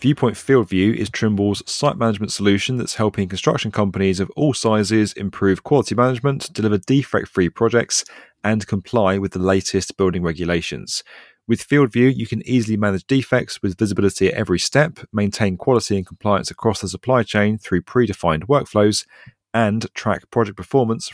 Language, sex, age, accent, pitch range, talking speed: English, male, 30-49, British, 95-115 Hz, 155 wpm